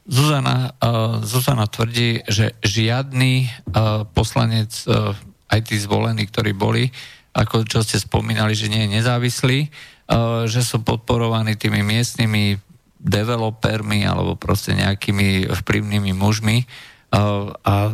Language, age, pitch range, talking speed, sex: Slovak, 50-69, 105-125 Hz, 120 wpm, male